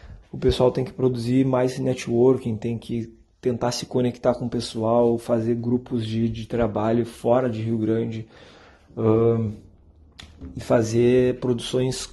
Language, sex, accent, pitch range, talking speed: Portuguese, male, Brazilian, 110-125 Hz, 140 wpm